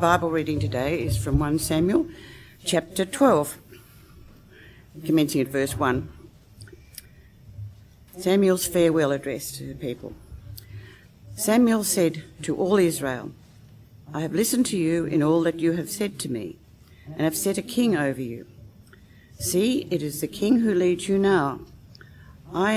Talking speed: 140 wpm